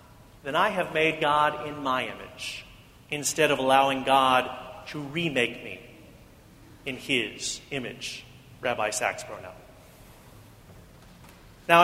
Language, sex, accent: English, male, American